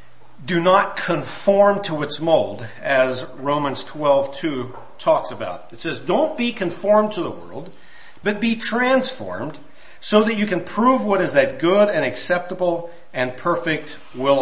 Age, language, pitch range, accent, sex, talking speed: 50-69, English, 130-210 Hz, American, male, 150 wpm